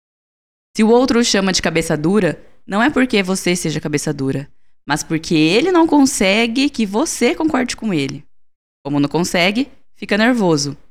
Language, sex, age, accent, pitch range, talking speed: Portuguese, female, 10-29, Brazilian, 160-225 Hz, 165 wpm